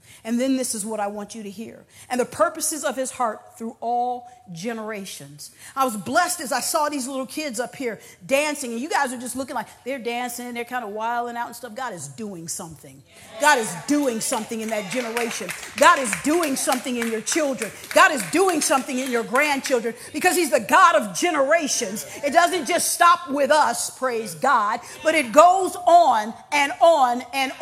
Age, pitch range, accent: 50-69, 190-280 Hz, American